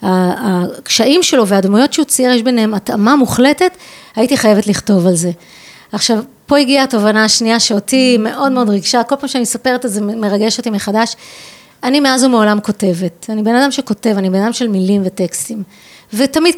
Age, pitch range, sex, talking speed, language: 30-49, 215-280 Hz, female, 170 wpm, Hebrew